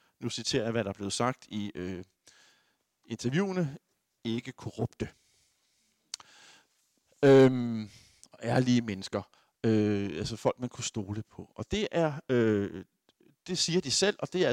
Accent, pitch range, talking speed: native, 115-150 Hz, 140 wpm